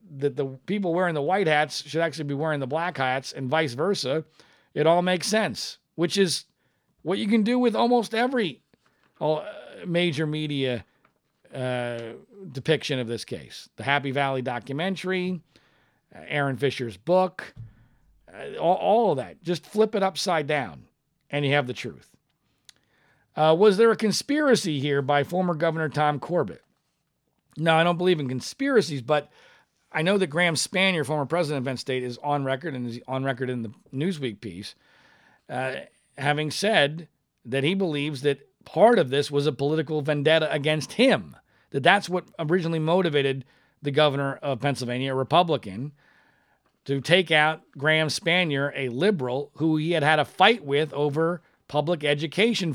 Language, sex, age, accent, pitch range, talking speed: English, male, 40-59, American, 140-180 Hz, 160 wpm